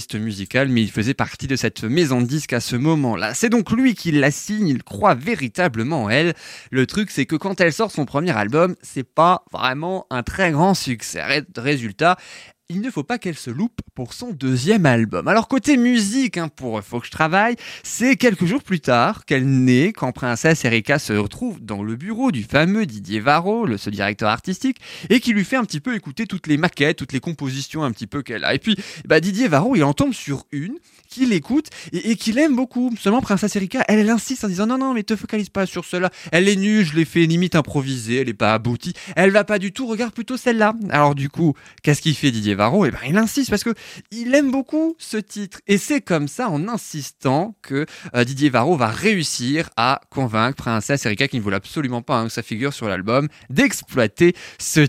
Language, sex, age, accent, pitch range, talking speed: French, male, 20-39, French, 130-210 Hz, 225 wpm